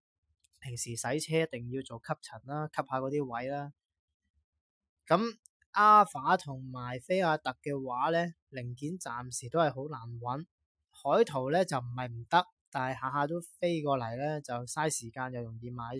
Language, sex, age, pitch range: Chinese, male, 20-39, 120-155 Hz